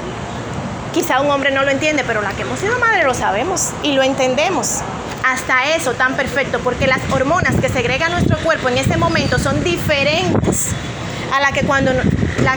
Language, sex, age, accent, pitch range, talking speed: Spanish, female, 30-49, American, 270-330 Hz, 180 wpm